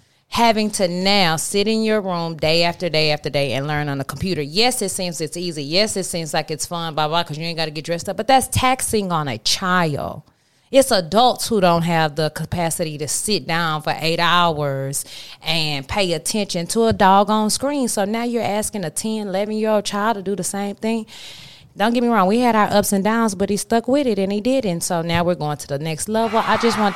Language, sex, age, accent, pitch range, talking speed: English, female, 20-39, American, 160-215 Hz, 240 wpm